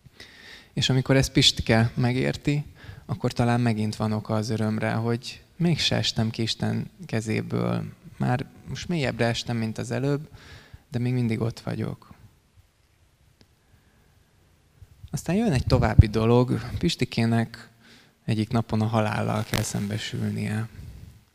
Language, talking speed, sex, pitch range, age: Hungarian, 120 wpm, male, 105-120 Hz, 20-39